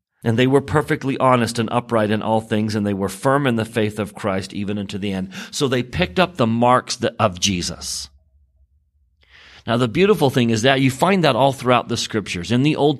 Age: 40-59